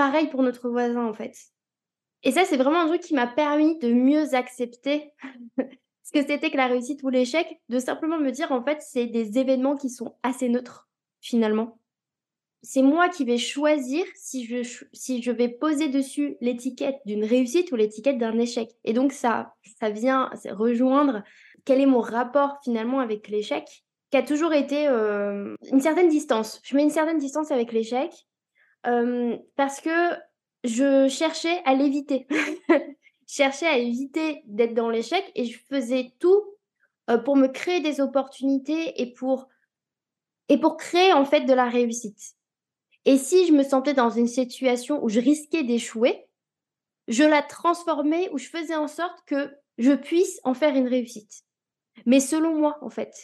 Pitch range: 245-300 Hz